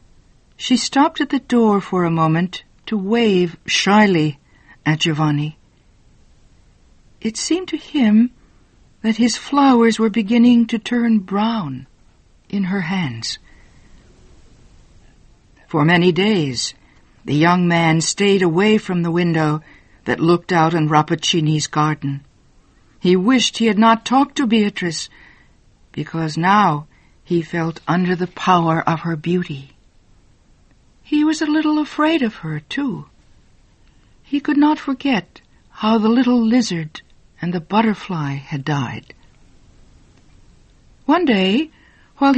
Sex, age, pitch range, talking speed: female, 60-79, 155-235 Hz, 125 wpm